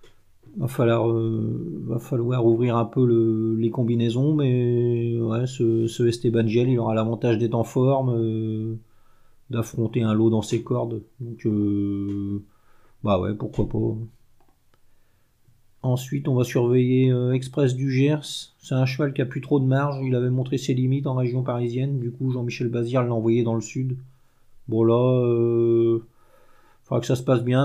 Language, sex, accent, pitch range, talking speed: French, male, French, 115-130 Hz, 170 wpm